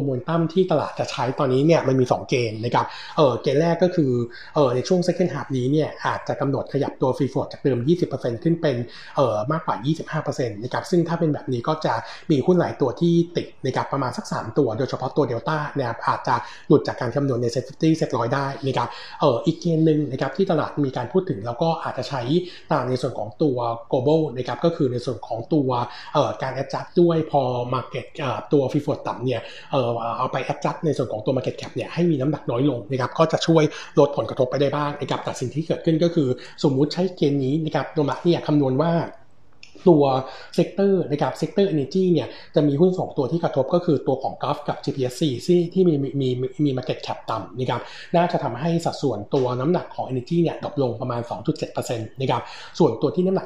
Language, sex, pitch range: Thai, male, 130-165 Hz